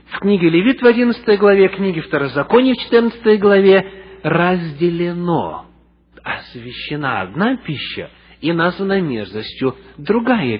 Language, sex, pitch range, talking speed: English, male, 125-205 Hz, 110 wpm